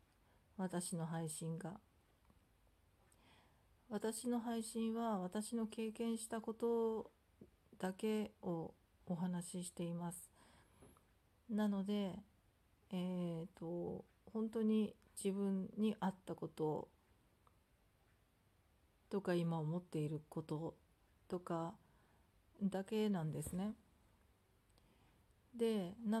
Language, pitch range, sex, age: Japanese, 160-210 Hz, female, 40-59